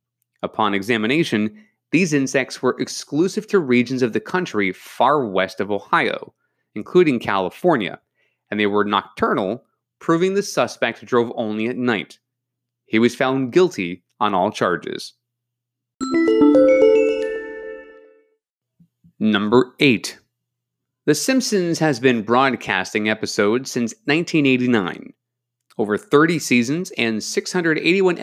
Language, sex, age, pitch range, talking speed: English, male, 30-49, 110-170 Hz, 105 wpm